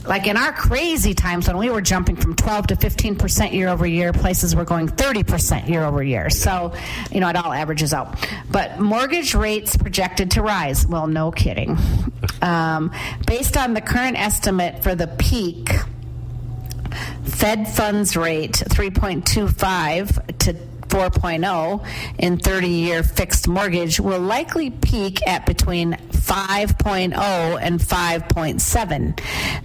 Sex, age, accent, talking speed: female, 40-59, American, 140 wpm